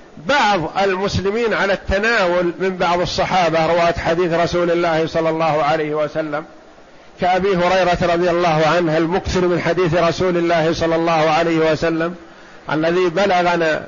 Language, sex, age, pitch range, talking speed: Arabic, male, 50-69, 165-190 Hz, 135 wpm